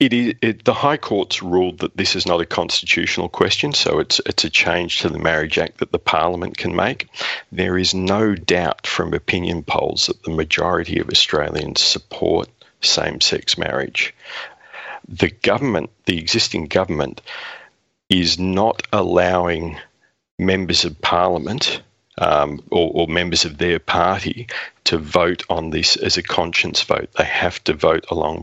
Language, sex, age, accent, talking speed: English, male, 40-59, Australian, 155 wpm